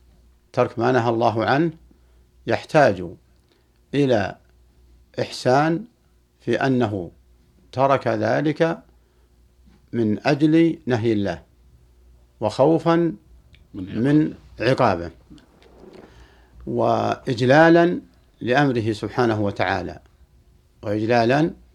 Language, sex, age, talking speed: Arabic, male, 60-79, 65 wpm